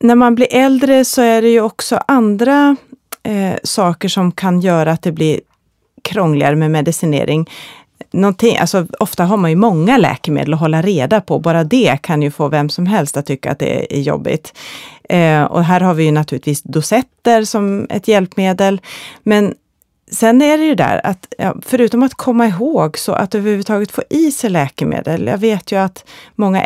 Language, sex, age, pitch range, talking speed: Swedish, female, 30-49, 165-220 Hz, 175 wpm